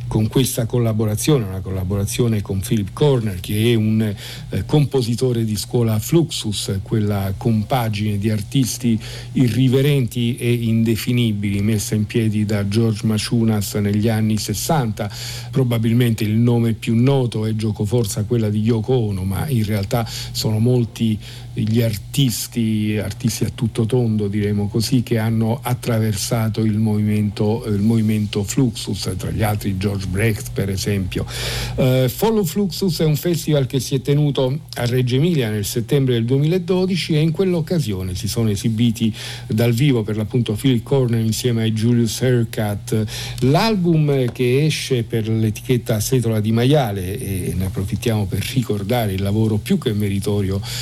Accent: native